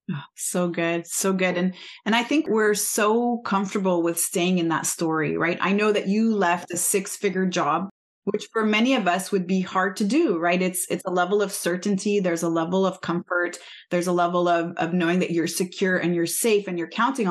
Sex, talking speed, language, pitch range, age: female, 220 wpm, English, 180-215 Hz, 30-49